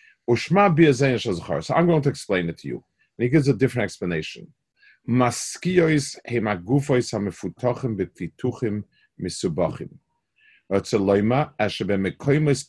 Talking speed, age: 75 wpm, 40-59